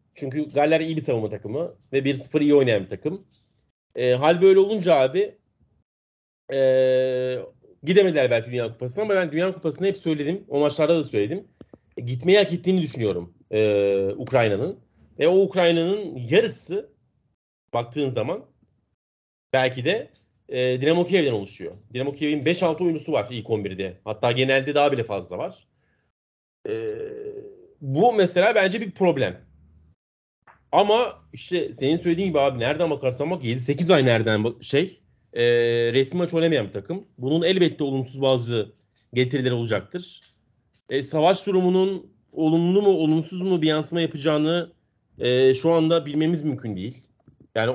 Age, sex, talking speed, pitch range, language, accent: 40-59, male, 140 wpm, 125-170 Hz, Turkish, native